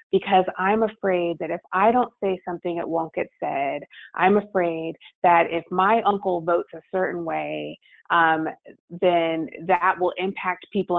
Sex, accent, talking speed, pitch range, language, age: female, American, 160 wpm, 170-210 Hz, English, 30-49